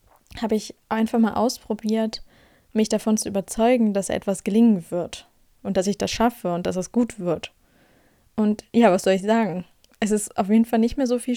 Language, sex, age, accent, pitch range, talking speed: German, female, 20-39, German, 210-240 Hz, 200 wpm